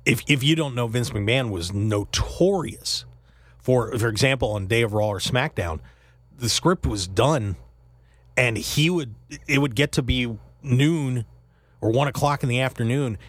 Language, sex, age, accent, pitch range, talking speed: English, male, 40-59, American, 95-140 Hz, 165 wpm